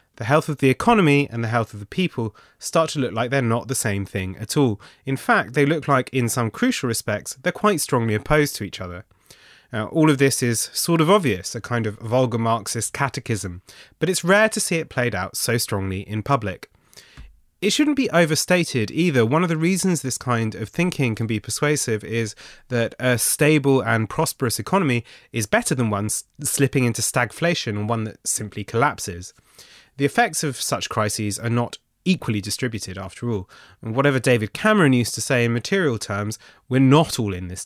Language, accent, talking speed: English, British, 200 wpm